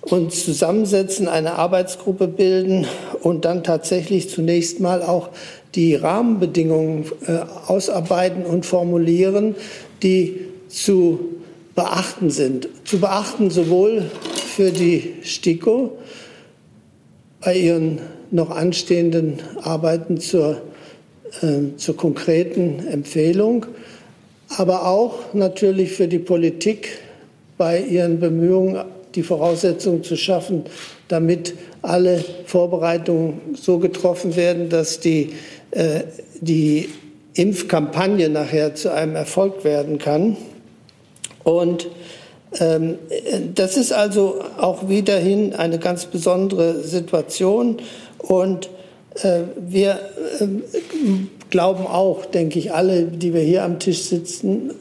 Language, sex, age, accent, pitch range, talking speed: German, male, 60-79, German, 165-190 Hz, 100 wpm